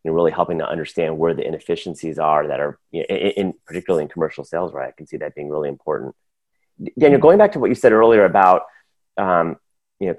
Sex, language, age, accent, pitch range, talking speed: male, English, 30-49, American, 90-100 Hz, 230 wpm